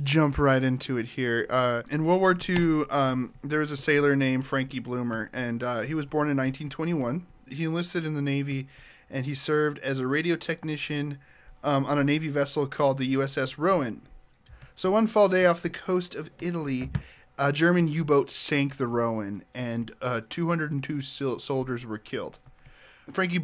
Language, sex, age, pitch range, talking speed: English, male, 10-29, 125-150 Hz, 175 wpm